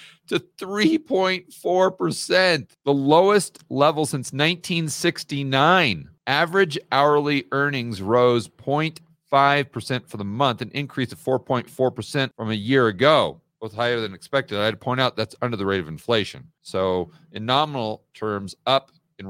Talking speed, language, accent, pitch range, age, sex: 135 wpm, English, American, 115-160 Hz, 40-59, male